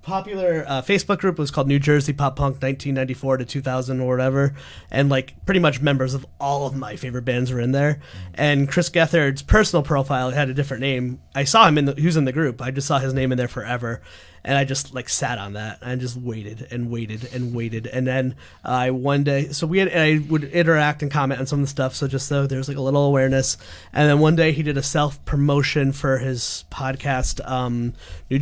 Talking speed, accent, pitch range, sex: 235 wpm, American, 130-150 Hz, male